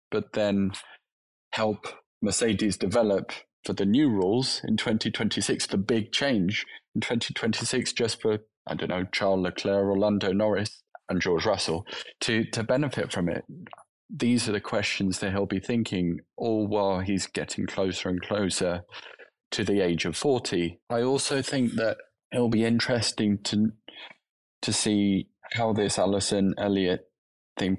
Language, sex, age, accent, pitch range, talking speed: English, male, 20-39, British, 95-110 Hz, 145 wpm